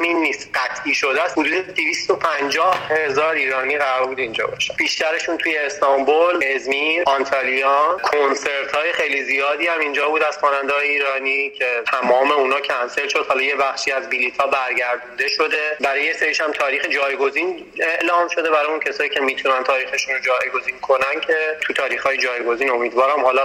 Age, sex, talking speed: 30-49, male, 150 wpm